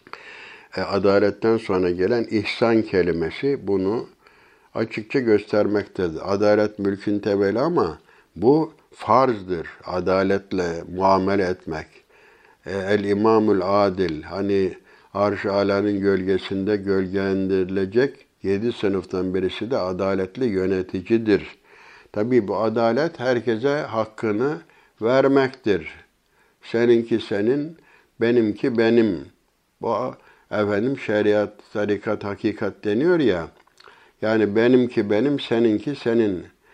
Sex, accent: male, native